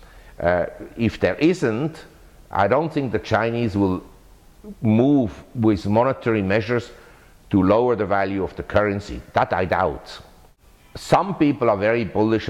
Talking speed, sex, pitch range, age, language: 140 wpm, male, 95-125 Hz, 50-69, English